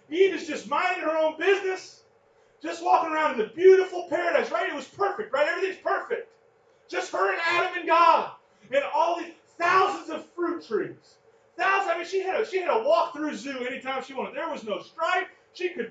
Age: 30-49